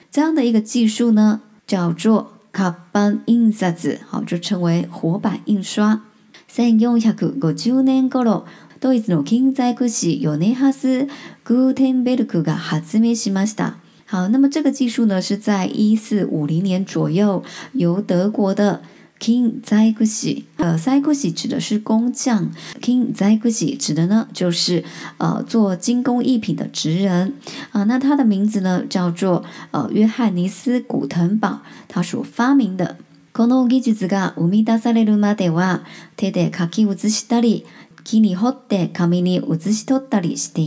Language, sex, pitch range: Chinese, male, 185-235 Hz